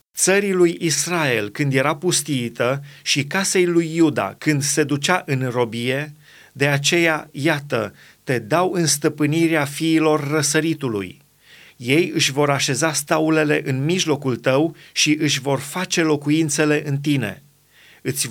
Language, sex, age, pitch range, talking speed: Romanian, male, 30-49, 135-170 Hz, 130 wpm